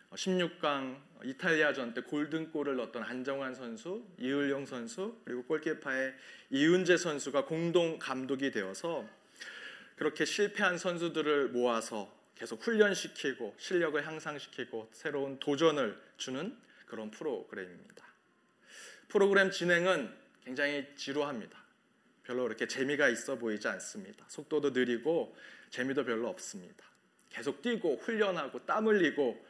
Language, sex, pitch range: Korean, male, 135-185 Hz